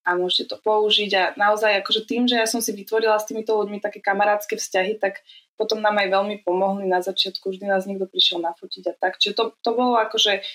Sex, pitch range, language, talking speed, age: female, 195-230 Hz, Slovak, 220 wpm, 20-39